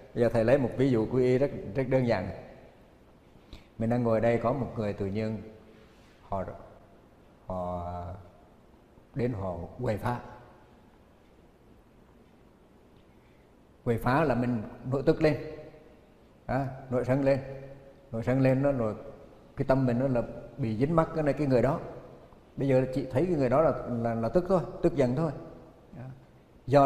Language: Vietnamese